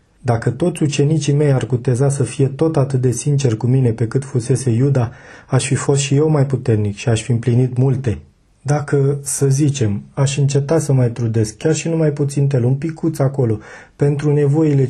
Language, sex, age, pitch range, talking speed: Romanian, male, 30-49, 120-140 Hz, 195 wpm